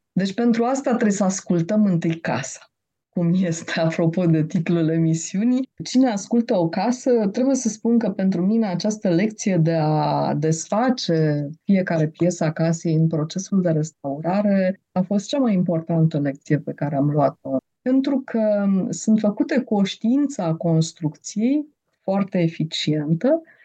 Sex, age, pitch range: female, 20-39, 165-225 Hz